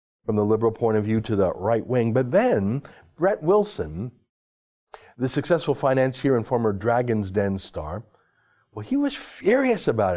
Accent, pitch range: American, 120-195 Hz